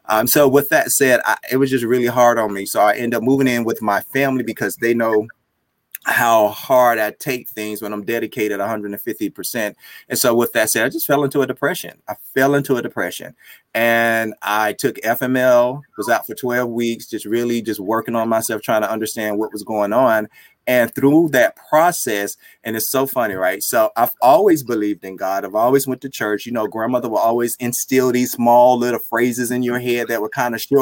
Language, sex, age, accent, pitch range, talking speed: English, male, 30-49, American, 115-140 Hz, 210 wpm